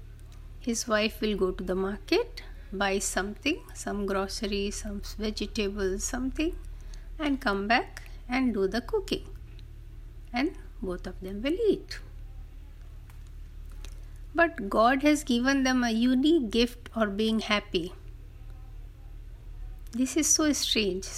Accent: native